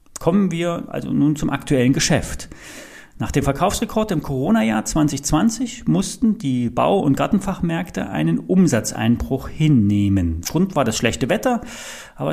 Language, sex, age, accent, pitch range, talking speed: German, male, 40-59, German, 125-185 Hz, 130 wpm